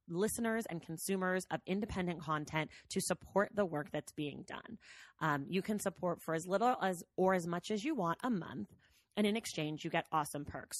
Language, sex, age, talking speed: English, female, 20-39, 200 wpm